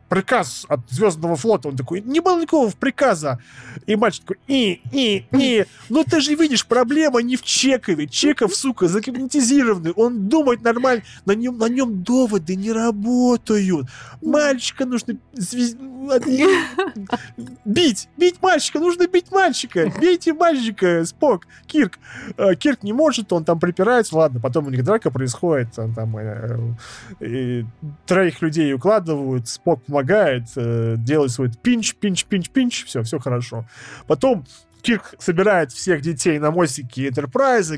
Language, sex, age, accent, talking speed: Russian, male, 20-39, native, 140 wpm